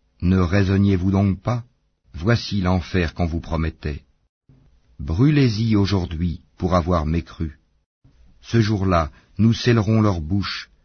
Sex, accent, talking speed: male, French, 110 wpm